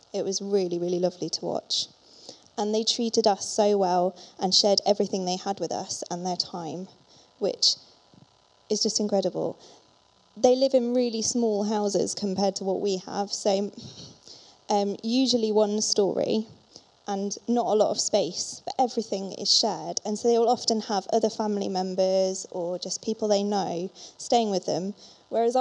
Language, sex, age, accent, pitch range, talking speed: English, female, 20-39, British, 195-235 Hz, 165 wpm